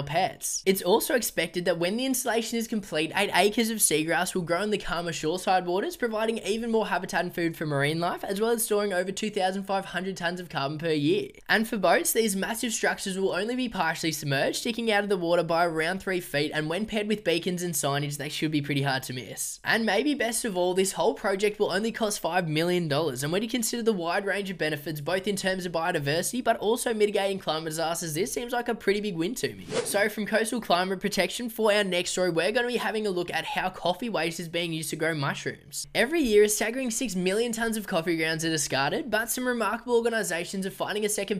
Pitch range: 165-215 Hz